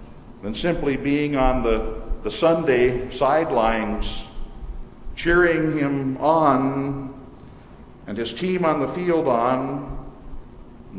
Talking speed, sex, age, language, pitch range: 105 wpm, male, 50-69, English, 135-175 Hz